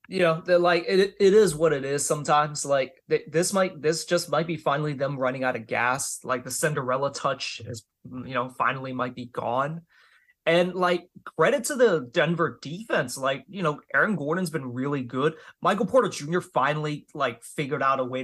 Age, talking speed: 20-39, 195 wpm